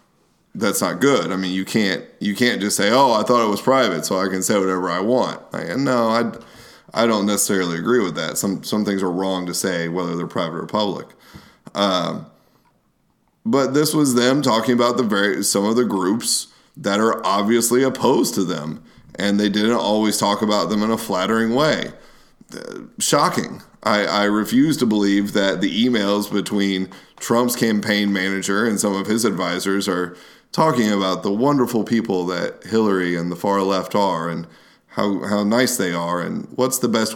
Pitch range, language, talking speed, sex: 95-110 Hz, English, 190 wpm, male